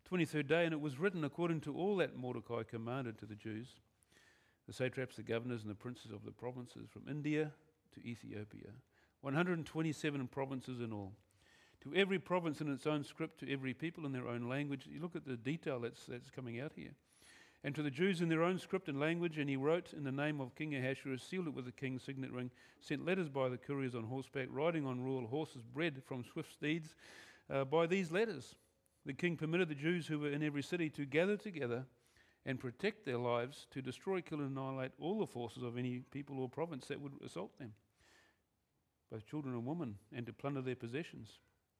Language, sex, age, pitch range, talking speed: English, male, 50-69, 120-155 Hz, 205 wpm